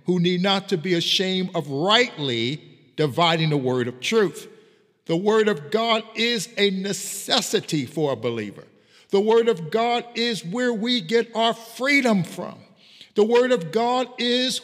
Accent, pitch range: American, 165-230 Hz